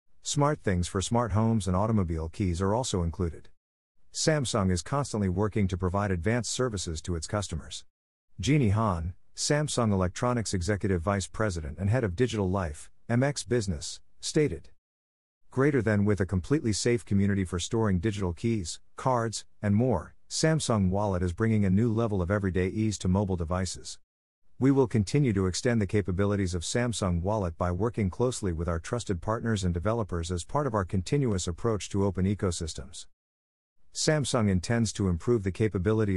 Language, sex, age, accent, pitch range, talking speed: English, male, 50-69, American, 90-115 Hz, 165 wpm